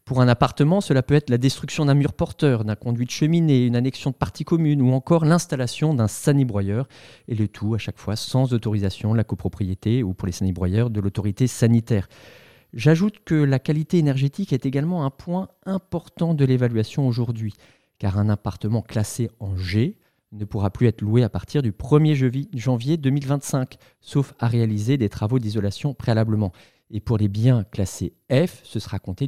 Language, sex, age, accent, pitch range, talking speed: French, male, 40-59, French, 110-145 Hz, 180 wpm